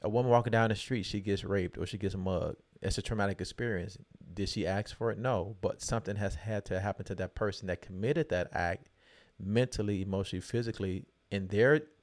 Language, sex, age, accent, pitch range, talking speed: English, male, 30-49, American, 95-115 Hz, 205 wpm